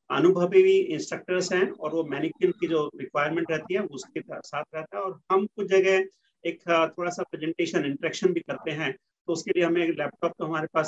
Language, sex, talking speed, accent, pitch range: Hindi, male, 205 wpm, native, 165-195 Hz